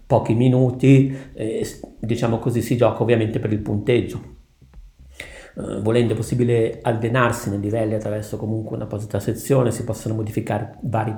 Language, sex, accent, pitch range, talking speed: Italian, male, native, 105-125 Hz, 140 wpm